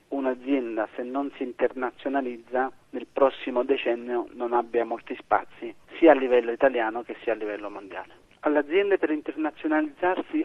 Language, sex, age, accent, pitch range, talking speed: Italian, male, 40-59, native, 125-145 Hz, 140 wpm